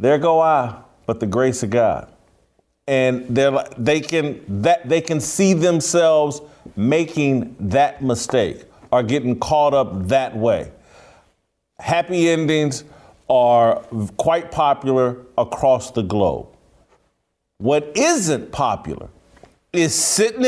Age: 50-69